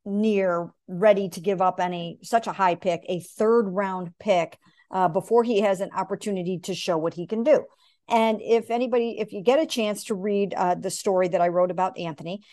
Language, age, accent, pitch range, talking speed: English, 50-69, American, 180-230 Hz, 210 wpm